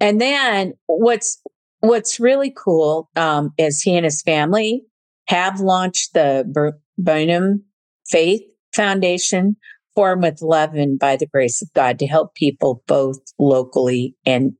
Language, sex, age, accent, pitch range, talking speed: English, female, 50-69, American, 130-170 Hz, 140 wpm